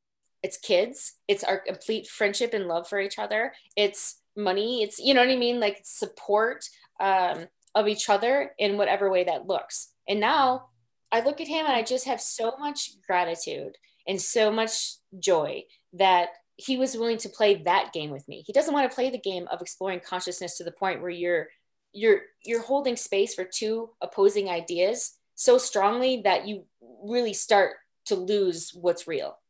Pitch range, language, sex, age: 185-255 Hz, English, female, 20-39